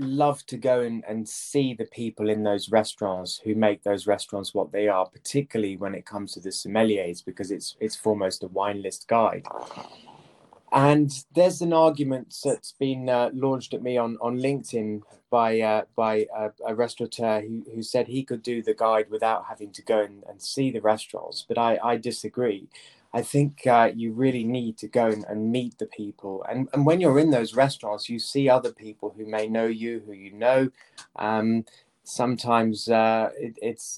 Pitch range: 105-125 Hz